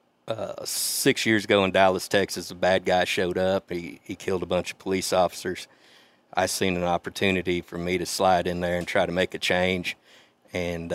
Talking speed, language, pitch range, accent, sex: 205 wpm, English, 90-95 Hz, American, male